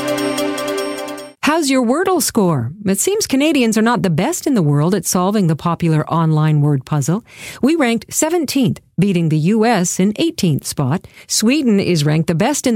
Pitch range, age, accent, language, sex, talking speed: 155-235 Hz, 50-69, American, English, female, 170 wpm